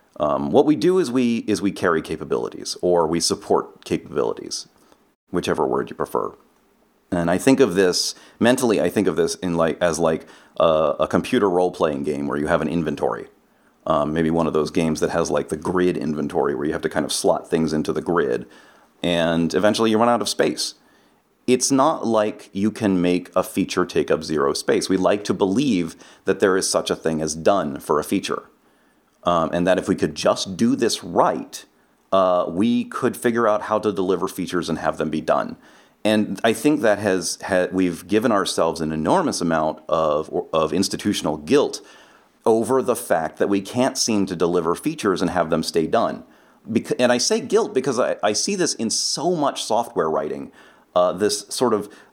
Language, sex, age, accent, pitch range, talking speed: English, male, 30-49, American, 85-115 Hz, 200 wpm